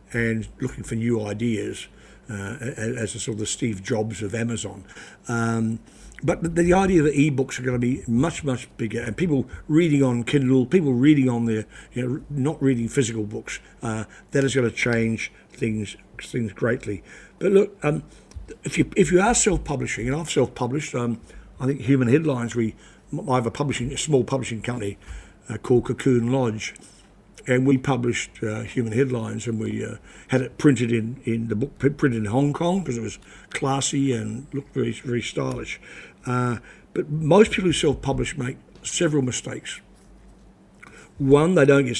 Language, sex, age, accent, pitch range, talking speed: English, male, 50-69, British, 115-140 Hz, 175 wpm